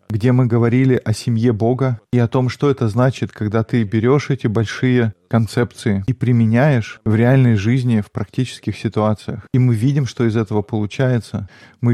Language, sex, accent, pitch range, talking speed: Russian, male, native, 110-130 Hz, 170 wpm